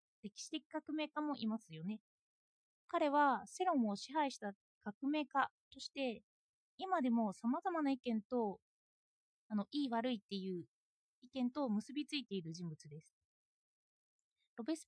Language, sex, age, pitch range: Japanese, female, 20-39, 220-310 Hz